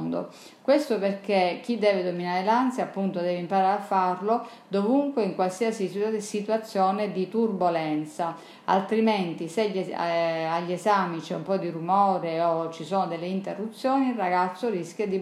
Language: Italian